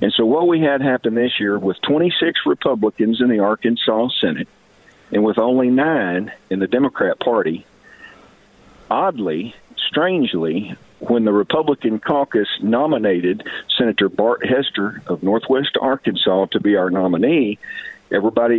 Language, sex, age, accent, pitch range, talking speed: English, male, 50-69, American, 105-125 Hz, 130 wpm